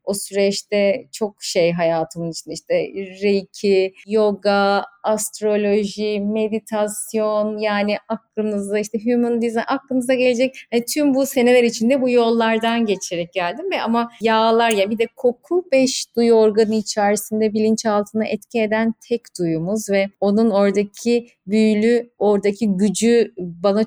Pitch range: 200-235 Hz